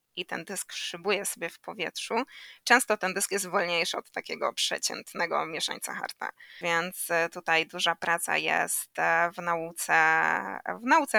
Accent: native